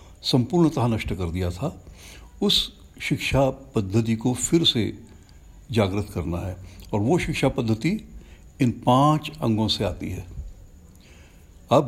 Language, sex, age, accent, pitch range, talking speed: Hindi, male, 60-79, native, 90-125 Hz, 125 wpm